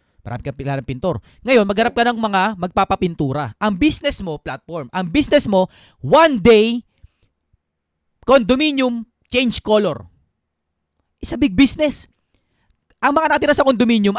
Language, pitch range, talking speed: Filipino, 155-240 Hz, 125 wpm